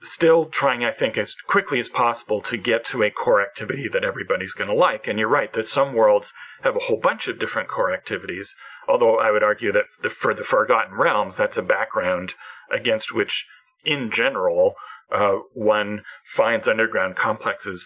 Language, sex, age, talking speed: English, male, 40-59, 185 wpm